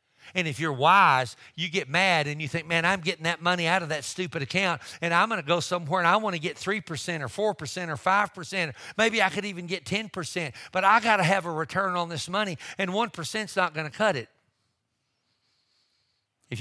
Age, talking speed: 50-69, 220 wpm